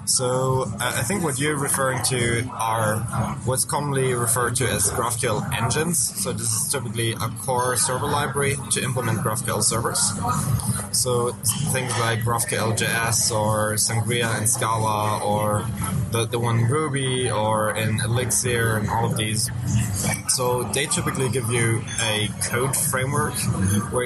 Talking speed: 145 wpm